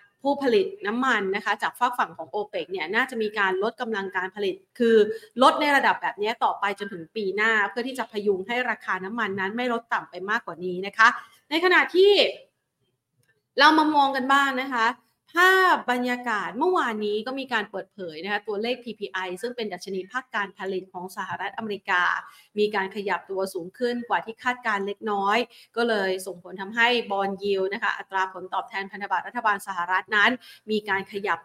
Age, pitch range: 30-49, 195-245 Hz